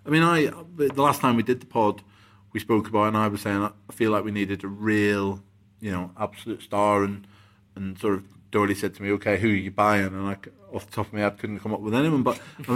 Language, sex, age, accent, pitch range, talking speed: English, male, 30-49, British, 100-125 Hz, 270 wpm